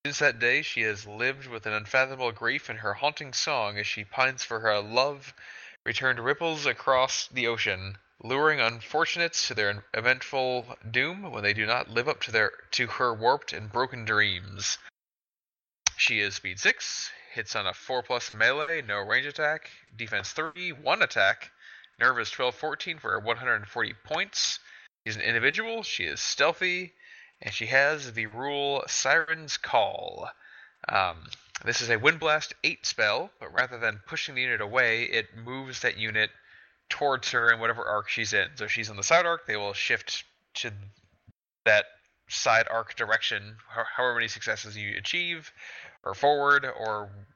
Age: 20-39